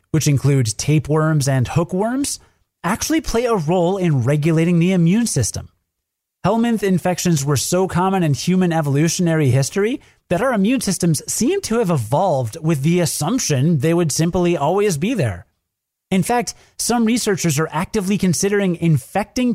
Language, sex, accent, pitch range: English, male, American, 140-200 Hz